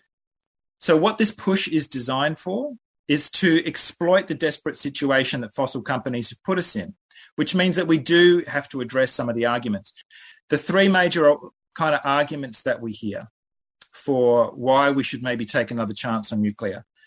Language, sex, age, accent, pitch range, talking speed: English, male, 30-49, Australian, 120-160 Hz, 180 wpm